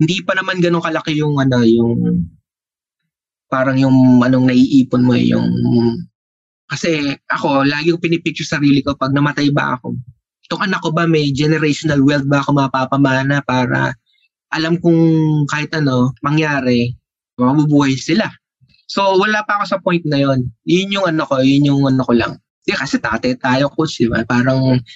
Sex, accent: male, native